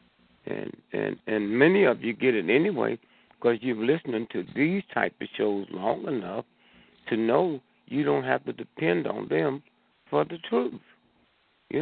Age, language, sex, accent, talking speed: 60-79, English, male, American, 160 wpm